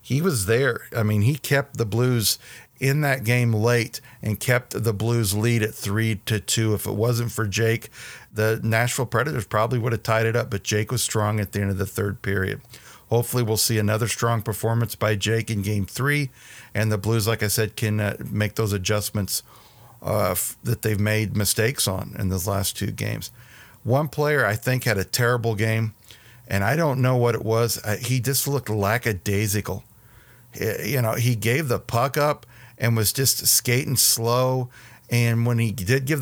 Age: 50-69